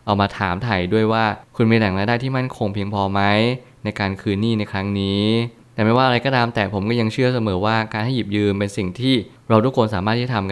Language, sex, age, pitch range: Thai, male, 20-39, 100-120 Hz